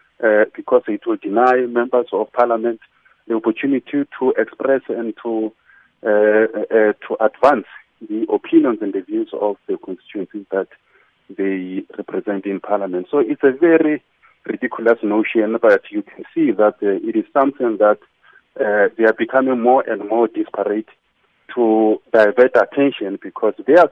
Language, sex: English, male